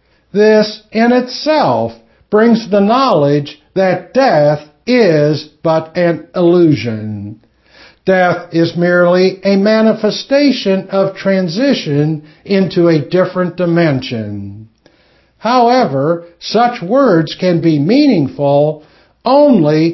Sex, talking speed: male, 90 wpm